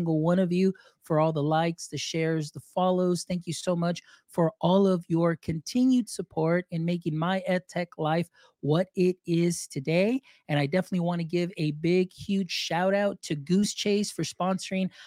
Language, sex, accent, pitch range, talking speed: English, male, American, 160-190 Hz, 185 wpm